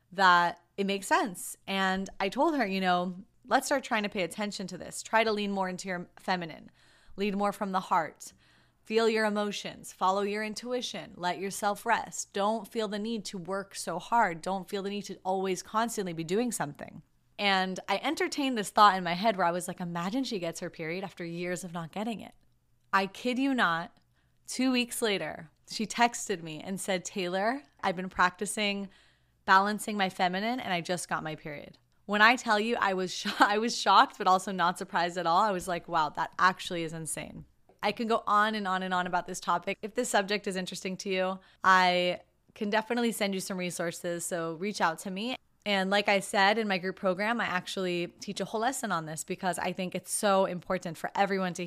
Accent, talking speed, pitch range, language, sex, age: American, 215 wpm, 180-210 Hz, English, female, 30-49